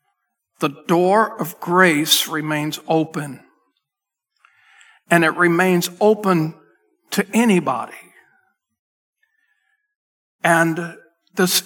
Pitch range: 155-195 Hz